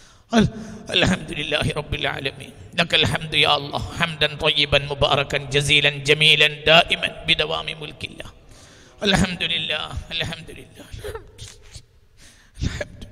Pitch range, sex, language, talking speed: 125-155 Hz, male, Malayalam, 75 wpm